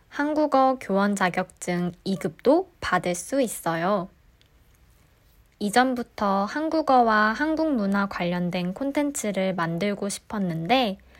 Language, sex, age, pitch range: Korean, female, 20-39, 190-280 Hz